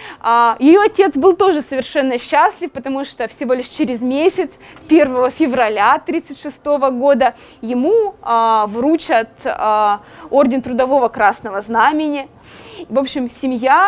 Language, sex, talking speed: Russian, female, 110 wpm